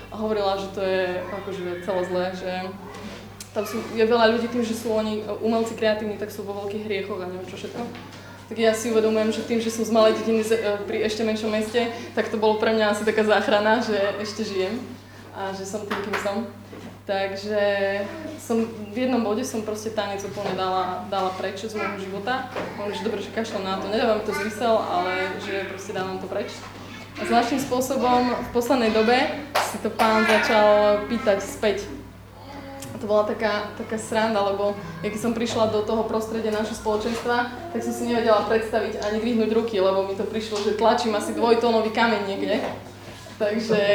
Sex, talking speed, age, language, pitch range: female, 190 wpm, 20-39, Slovak, 195-225 Hz